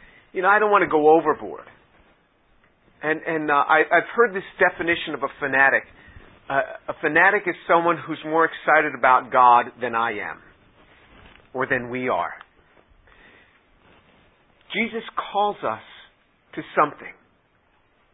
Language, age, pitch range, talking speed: English, 50-69, 130-185 Hz, 135 wpm